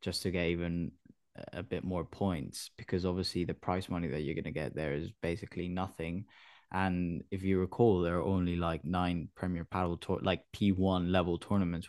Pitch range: 90-100 Hz